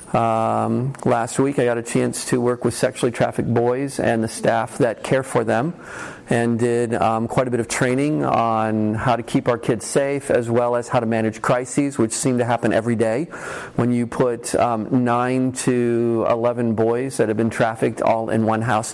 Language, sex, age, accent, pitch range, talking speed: English, male, 40-59, American, 115-130 Hz, 205 wpm